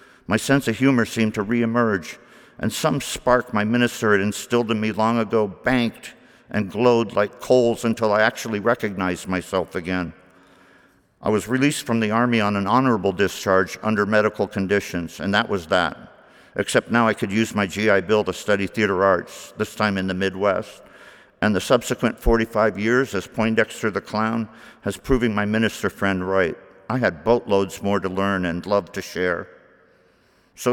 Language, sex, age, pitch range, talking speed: English, male, 50-69, 100-125 Hz, 175 wpm